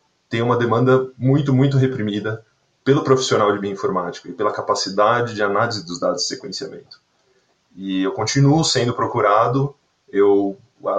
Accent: Brazilian